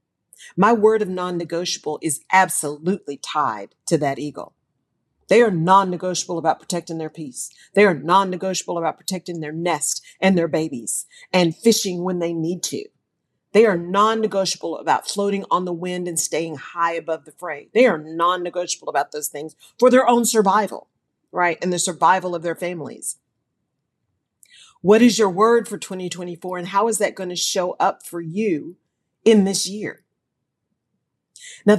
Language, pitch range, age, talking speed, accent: English, 160-200 Hz, 40-59, 160 wpm, American